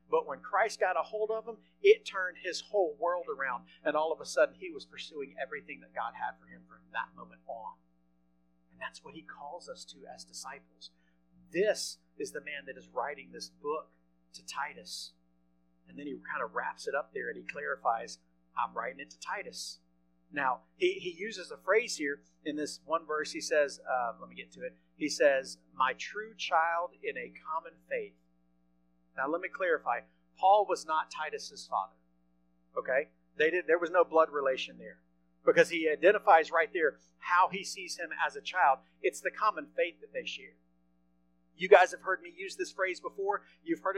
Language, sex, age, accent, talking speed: English, male, 40-59, American, 200 wpm